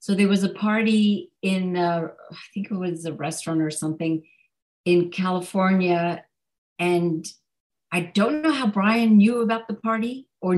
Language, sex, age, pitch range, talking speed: English, female, 50-69, 175-200 Hz, 155 wpm